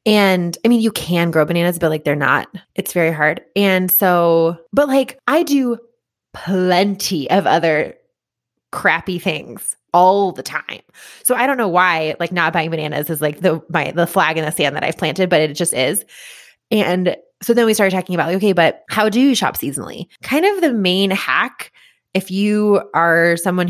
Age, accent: 20-39, American